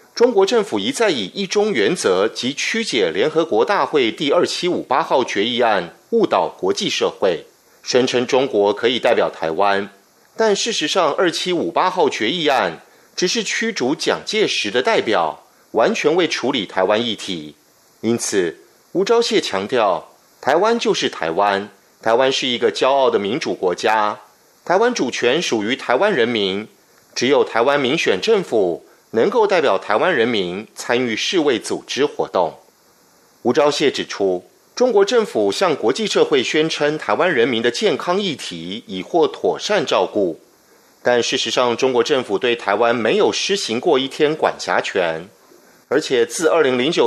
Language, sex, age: German, male, 30-49